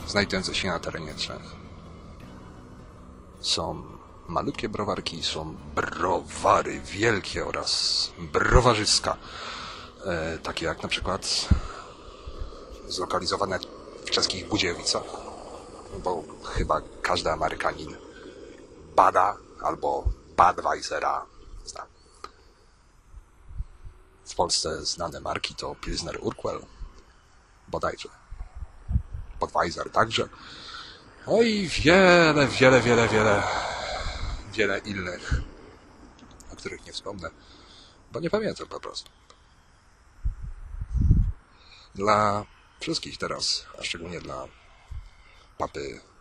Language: Polish